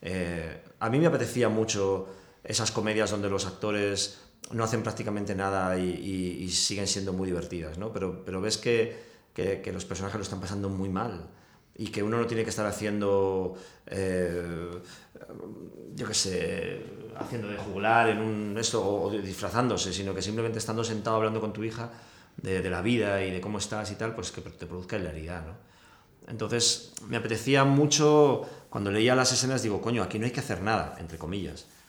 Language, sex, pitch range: Spanish, male, 95-115 Hz